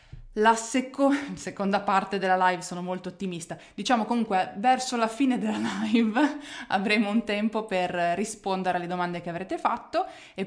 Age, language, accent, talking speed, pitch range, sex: 20-39, Italian, native, 155 wpm, 180-245 Hz, female